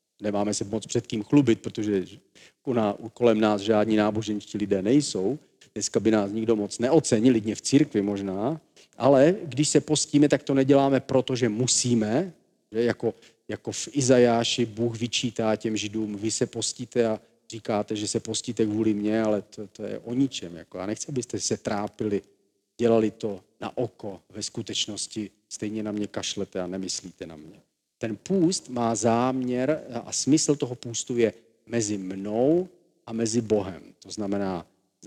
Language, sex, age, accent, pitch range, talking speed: Czech, male, 40-59, native, 105-130 Hz, 160 wpm